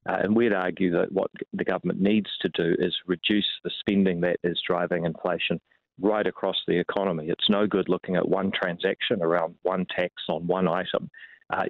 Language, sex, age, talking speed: English, male, 40-59, 190 wpm